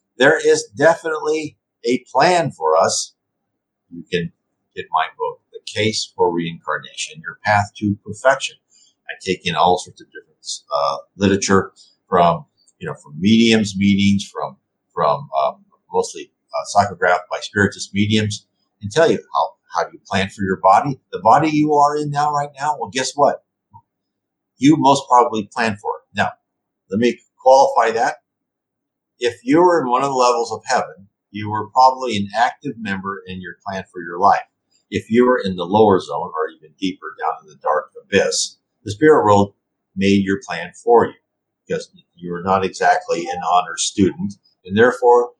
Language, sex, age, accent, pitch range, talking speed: English, male, 50-69, American, 100-150 Hz, 175 wpm